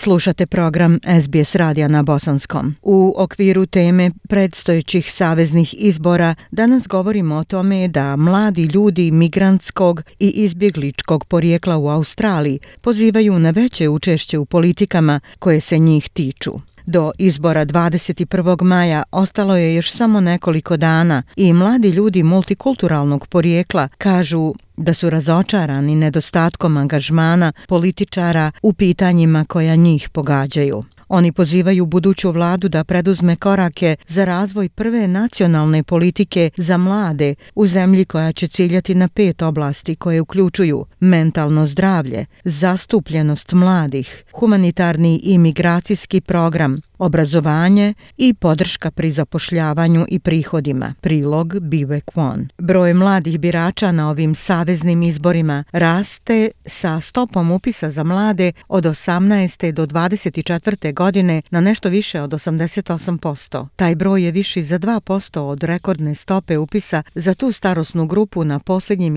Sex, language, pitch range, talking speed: female, Croatian, 160-190 Hz, 125 wpm